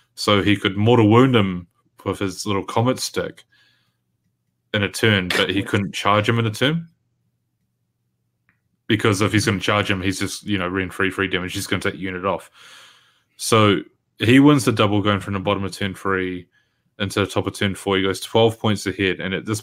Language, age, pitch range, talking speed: English, 20-39, 95-110 Hz, 205 wpm